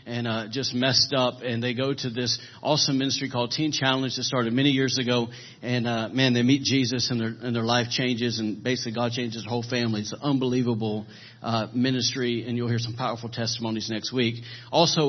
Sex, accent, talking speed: male, American, 210 wpm